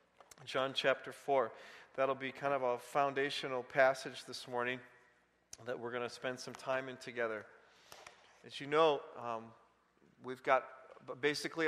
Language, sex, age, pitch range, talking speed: English, male, 40-59, 145-195 Hz, 145 wpm